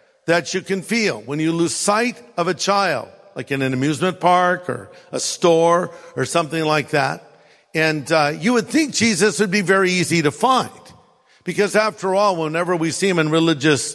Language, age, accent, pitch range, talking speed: English, 50-69, American, 160-220 Hz, 190 wpm